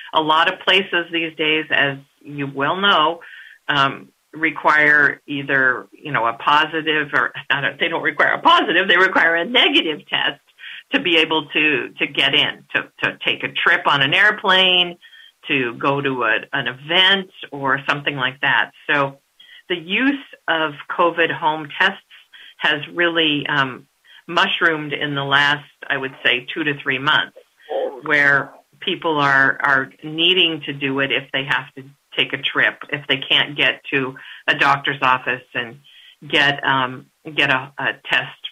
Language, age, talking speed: English, 50-69, 165 wpm